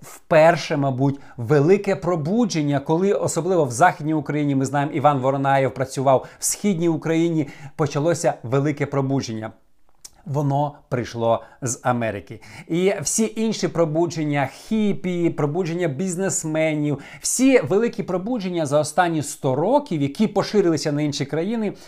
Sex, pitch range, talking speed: male, 140-175 Hz, 120 wpm